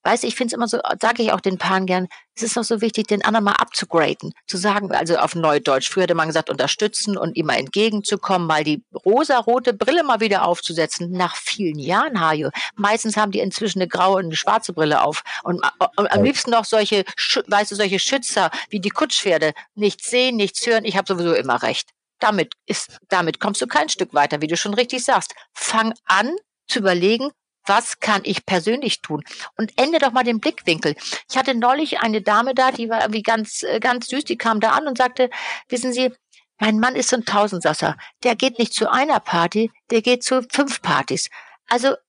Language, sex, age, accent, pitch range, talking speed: German, female, 50-69, German, 185-250 Hz, 205 wpm